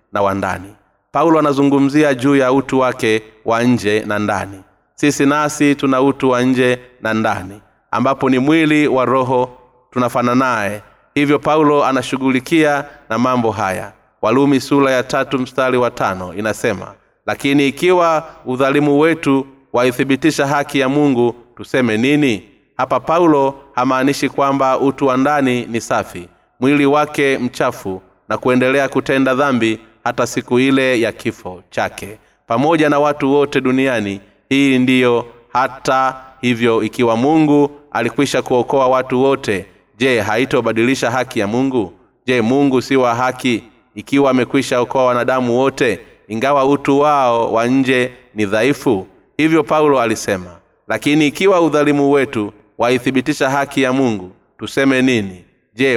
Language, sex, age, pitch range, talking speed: Swahili, male, 30-49, 115-140 Hz, 130 wpm